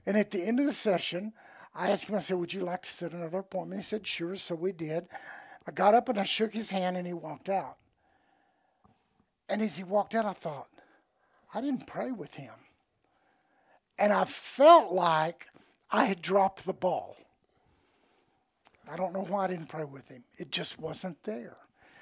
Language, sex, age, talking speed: English, male, 60-79, 195 wpm